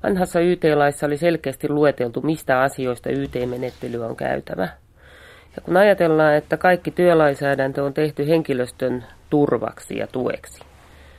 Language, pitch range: Finnish, 120-155 Hz